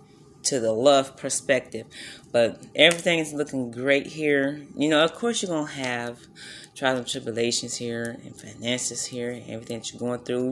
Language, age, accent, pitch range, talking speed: English, 30-49, American, 130-160 Hz, 170 wpm